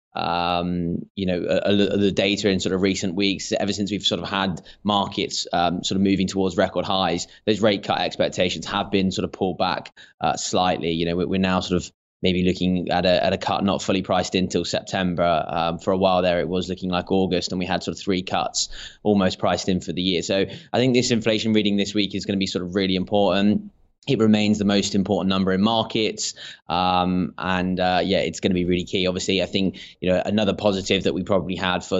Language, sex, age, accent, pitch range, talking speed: English, male, 20-39, British, 90-100 Hz, 235 wpm